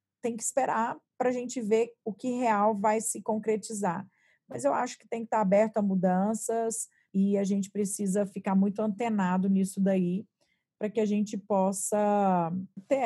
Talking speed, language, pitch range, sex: 175 wpm, Portuguese, 195-230 Hz, female